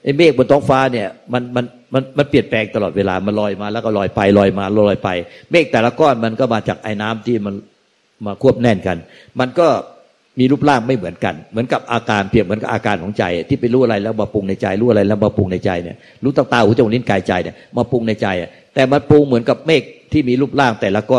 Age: 60-79